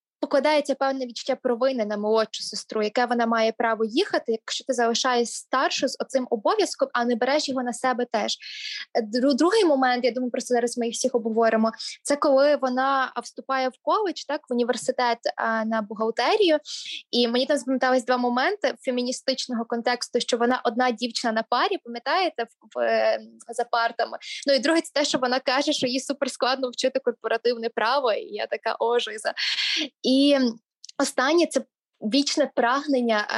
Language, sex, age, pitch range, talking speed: Ukrainian, female, 20-39, 230-280 Hz, 165 wpm